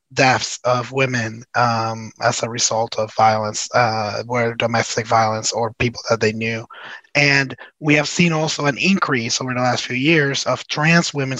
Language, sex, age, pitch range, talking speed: English, male, 20-39, 120-140 Hz, 175 wpm